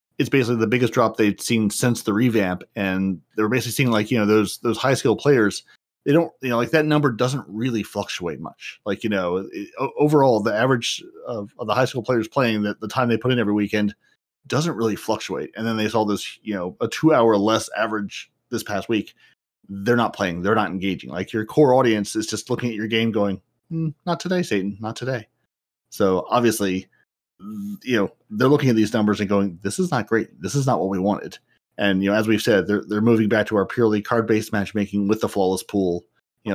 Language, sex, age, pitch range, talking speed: English, male, 30-49, 100-120 Hz, 230 wpm